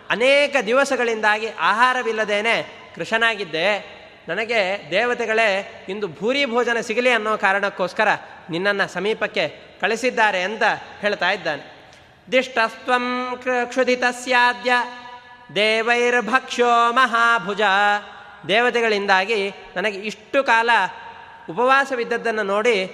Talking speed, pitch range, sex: 75 wpm, 200-245 Hz, male